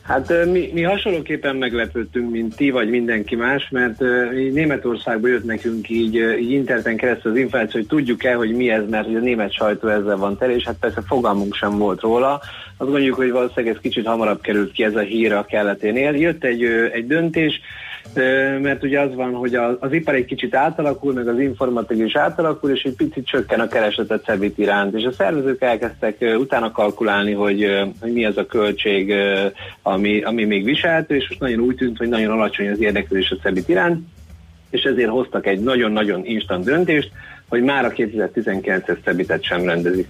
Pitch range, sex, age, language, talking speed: 110-140 Hz, male, 30-49, Hungarian, 180 wpm